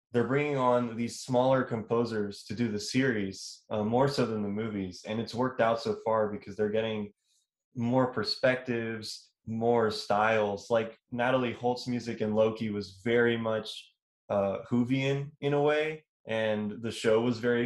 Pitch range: 110-125 Hz